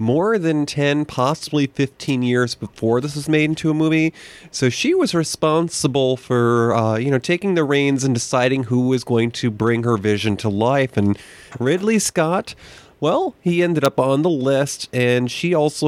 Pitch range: 120-150 Hz